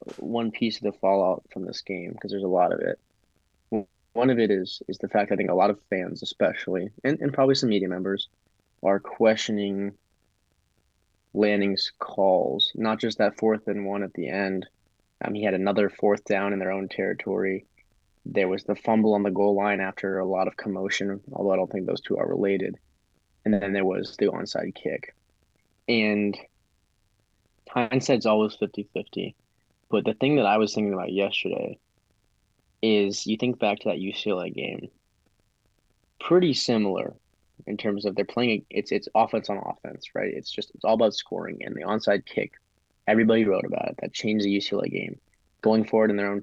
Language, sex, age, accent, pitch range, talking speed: English, male, 20-39, American, 100-110 Hz, 185 wpm